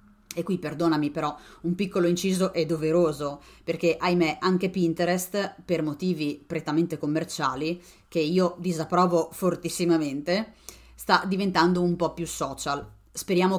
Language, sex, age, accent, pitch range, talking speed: Italian, female, 30-49, native, 150-185 Hz, 125 wpm